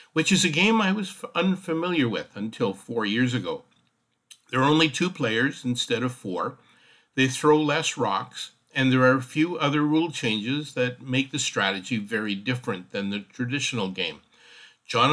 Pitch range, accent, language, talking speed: 115-150 Hz, American, English, 170 wpm